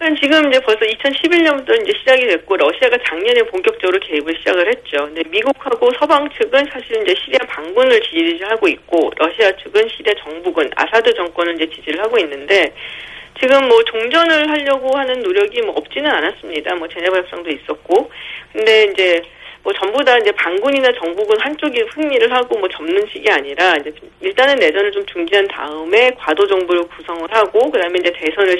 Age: 40-59